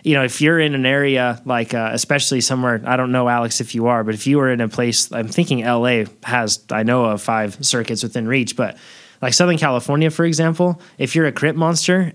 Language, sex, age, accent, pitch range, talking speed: English, male, 20-39, American, 120-150 Hz, 230 wpm